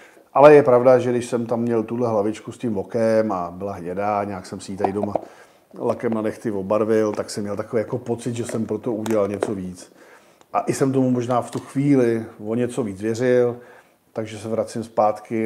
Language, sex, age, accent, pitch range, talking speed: Czech, male, 50-69, native, 105-120 Hz, 210 wpm